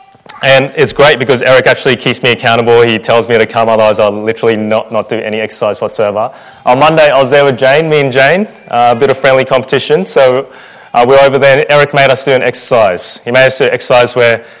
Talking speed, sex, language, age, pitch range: 240 wpm, male, English, 20-39, 115-155 Hz